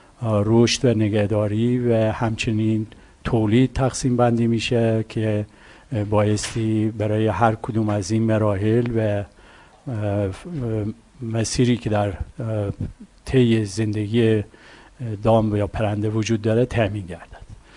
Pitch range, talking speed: 105-120 Hz, 100 wpm